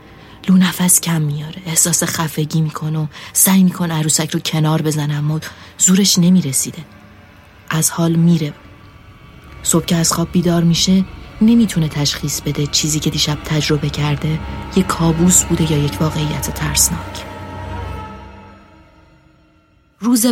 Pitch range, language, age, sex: 140-175 Hz, Persian, 30-49, female